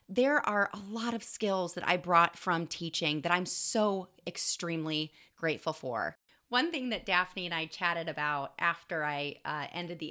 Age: 30-49